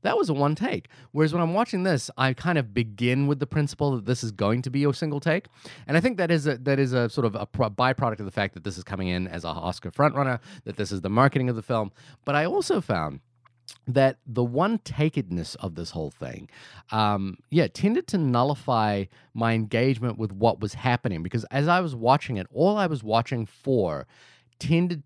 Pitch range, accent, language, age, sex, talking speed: 100-140 Hz, American, English, 30-49, male, 225 wpm